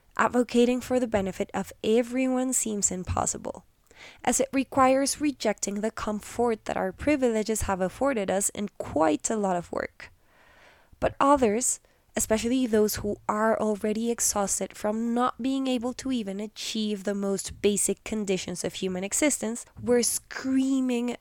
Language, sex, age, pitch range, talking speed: English, female, 20-39, 200-245 Hz, 140 wpm